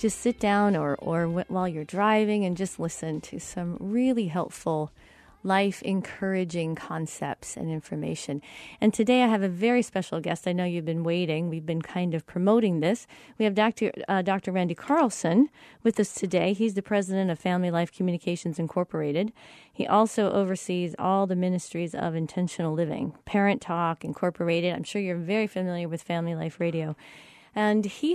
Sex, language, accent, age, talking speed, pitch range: female, English, American, 30-49, 170 wpm, 170-205 Hz